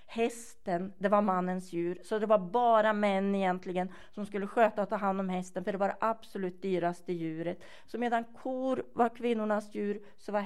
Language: Swedish